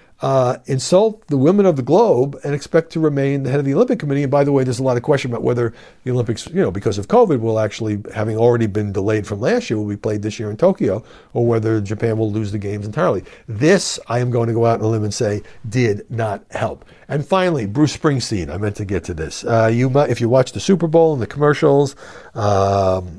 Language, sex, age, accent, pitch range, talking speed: English, male, 60-79, American, 105-135 Hz, 250 wpm